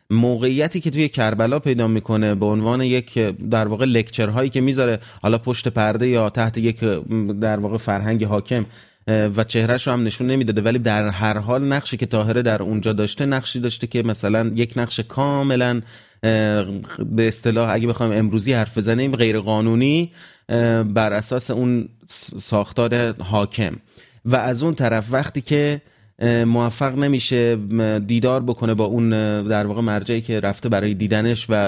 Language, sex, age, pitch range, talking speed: Persian, male, 30-49, 110-125 Hz, 155 wpm